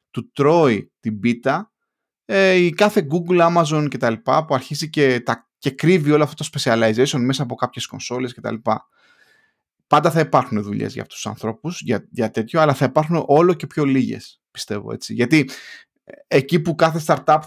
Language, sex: Greek, male